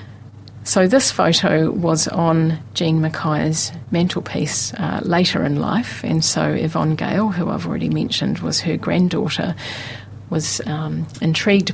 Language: English